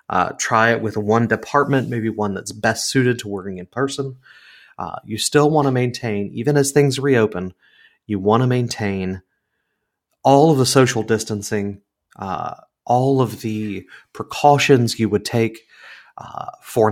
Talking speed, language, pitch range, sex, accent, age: 155 wpm, English, 105-135 Hz, male, American, 30-49